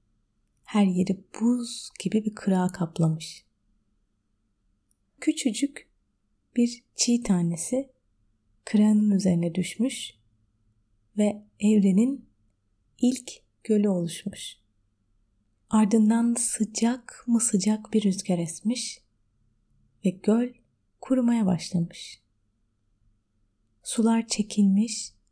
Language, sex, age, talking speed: Turkish, female, 30-49, 75 wpm